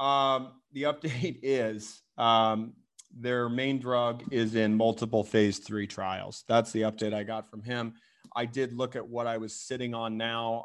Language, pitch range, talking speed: English, 110-130 Hz, 175 wpm